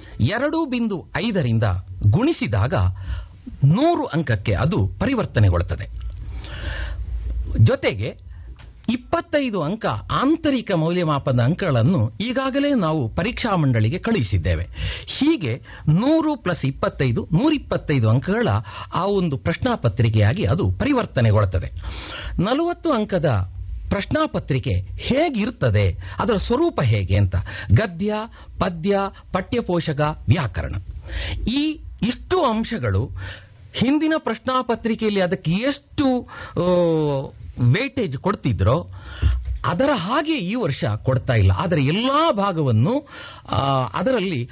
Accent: native